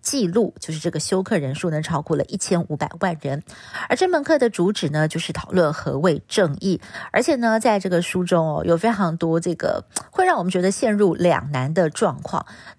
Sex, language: female, Chinese